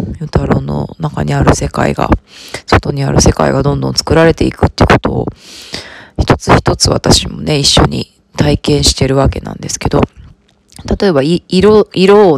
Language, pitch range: Japanese, 135-180 Hz